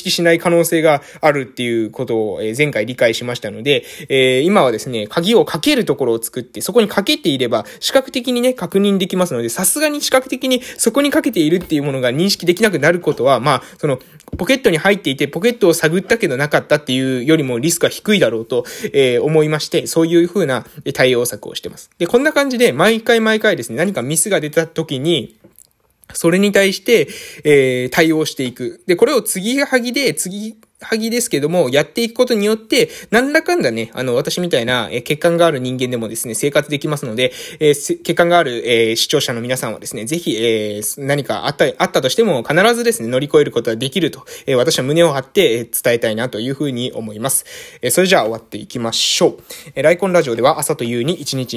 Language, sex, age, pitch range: Japanese, male, 20-39, 125-195 Hz